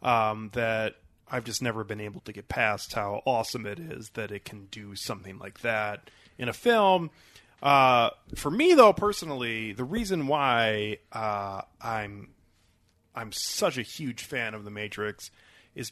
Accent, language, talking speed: American, English, 160 wpm